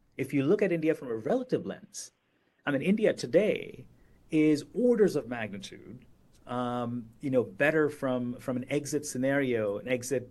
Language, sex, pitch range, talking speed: English, male, 125-150 Hz, 165 wpm